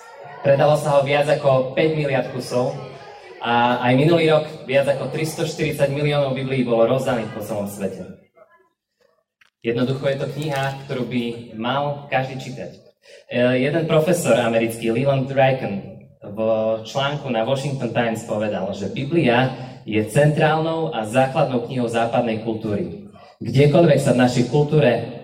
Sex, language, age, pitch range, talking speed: male, Slovak, 20-39, 115-145 Hz, 135 wpm